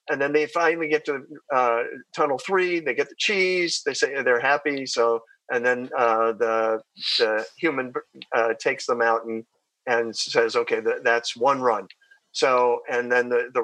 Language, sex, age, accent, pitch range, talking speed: English, male, 50-69, American, 125-190 Hz, 180 wpm